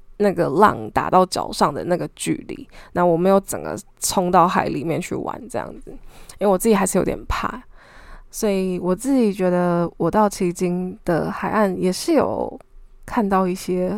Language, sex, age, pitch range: Chinese, female, 10-29, 180-230 Hz